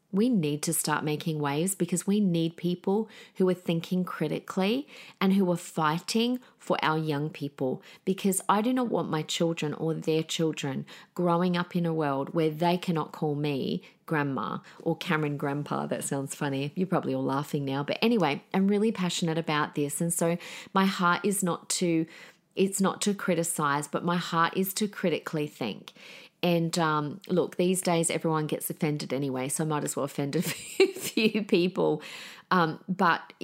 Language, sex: English, female